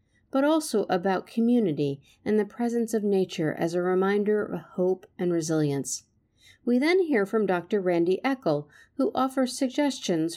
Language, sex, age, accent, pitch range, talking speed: English, female, 50-69, American, 155-230 Hz, 150 wpm